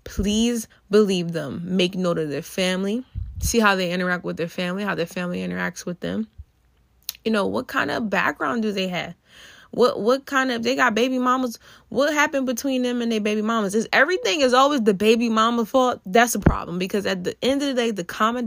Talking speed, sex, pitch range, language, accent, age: 215 wpm, female, 170-225 Hz, English, American, 20-39